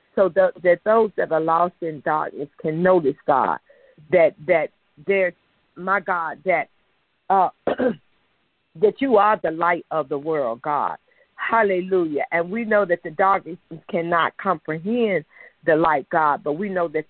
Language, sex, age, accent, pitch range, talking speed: English, female, 50-69, American, 160-205 Hz, 155 wpm